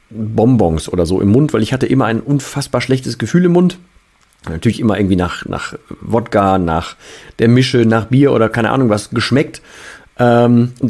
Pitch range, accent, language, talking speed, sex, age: 110-145 Hz, German, German, 175 wpm, male, 40-59